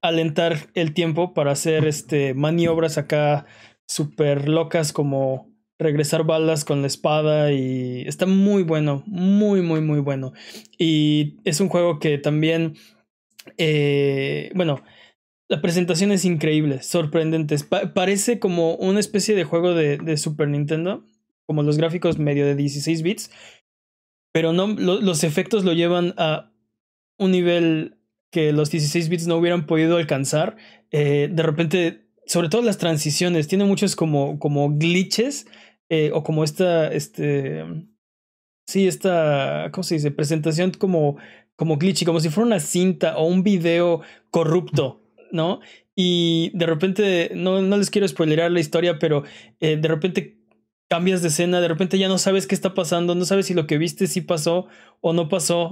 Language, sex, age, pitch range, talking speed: Spanish, male, 20-39, 150-180 Hz, 155 wpm